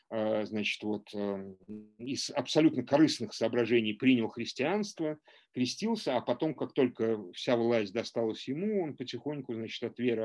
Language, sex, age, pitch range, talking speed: Russian, male, 50-69, 110-145 Hz, 130 wpm